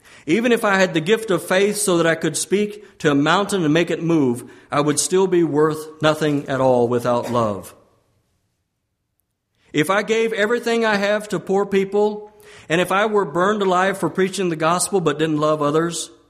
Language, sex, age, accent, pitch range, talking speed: English, male, 50-69, American, 120-195 Hz, 195 wpm